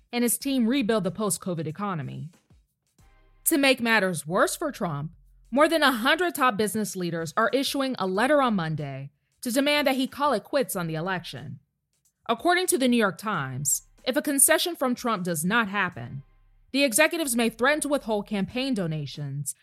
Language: English